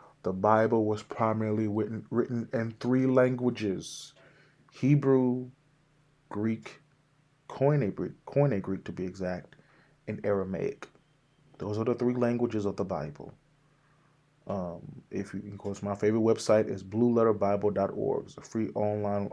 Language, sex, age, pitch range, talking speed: English, male, 30-49, 100-125 Hz, 120 wpm